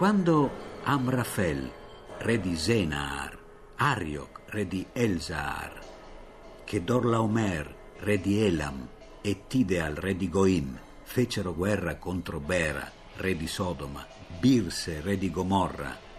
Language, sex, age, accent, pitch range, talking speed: Italian, male, 50-69, native, 90-125 Hz, 110 wpm